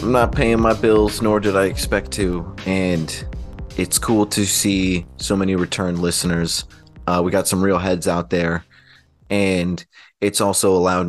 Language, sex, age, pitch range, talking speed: English, male, 30-49, 85-95 Hz, 170 wpm